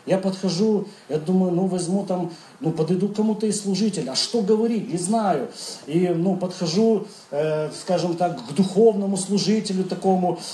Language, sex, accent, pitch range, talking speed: Russian, male, native, 180-230 Hz, 160 wpm